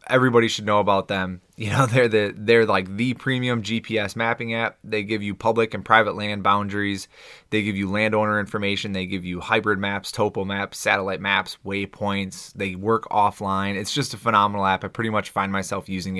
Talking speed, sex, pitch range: 195 wpm, male, 105-125 Hz